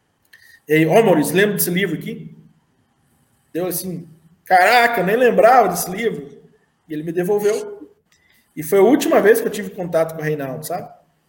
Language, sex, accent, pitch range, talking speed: Portuguese, male, Brazilian, 145-180 Hz, 170 wpm